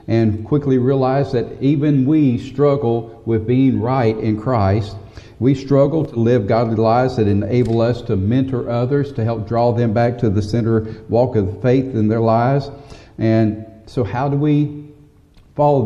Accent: American